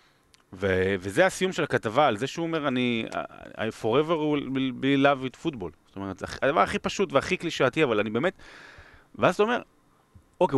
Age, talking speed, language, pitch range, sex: 30-49, 180 wpm, Hebrew, 110-145 Hz, male